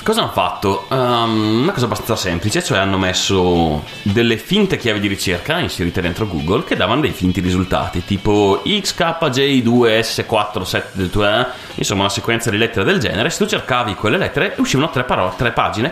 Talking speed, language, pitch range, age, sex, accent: 155 wpm, Italian, 90-115 Hz, 30-49, male, native